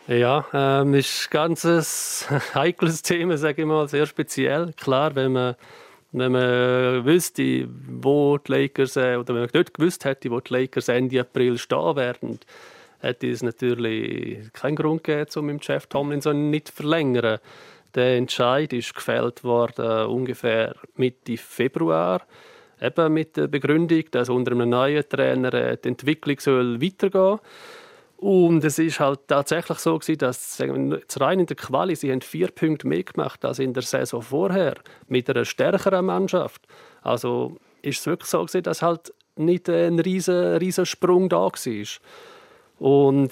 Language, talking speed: German, 145 wpm